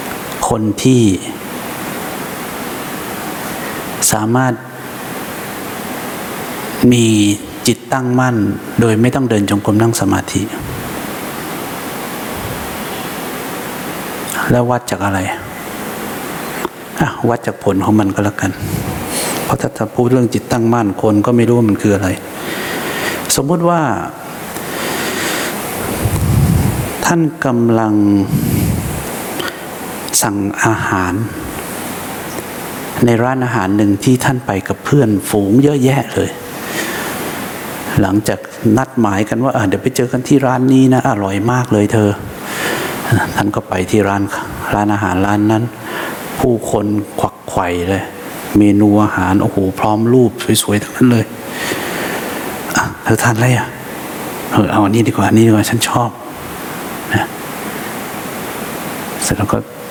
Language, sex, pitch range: English, male, 100-125 Hz